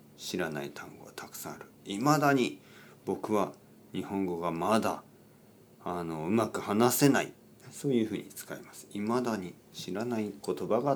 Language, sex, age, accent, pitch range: Japanese, male, 40-59, native, 105-150 Hz